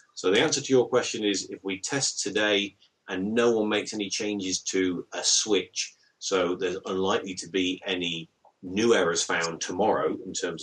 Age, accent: 30-49, British